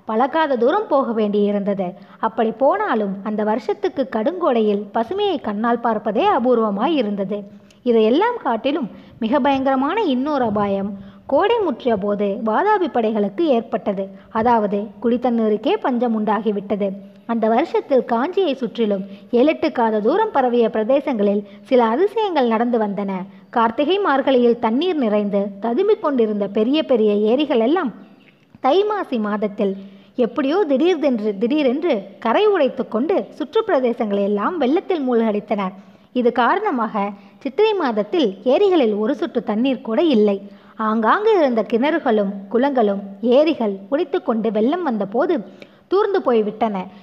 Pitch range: 210-280 Hz